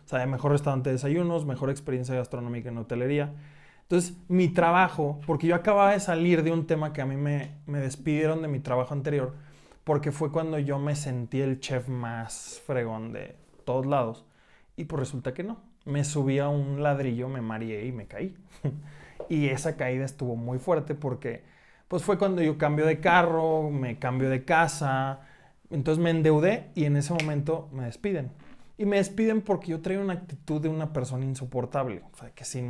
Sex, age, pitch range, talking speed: male, 20-39, 130-160 Hz, 190 wpm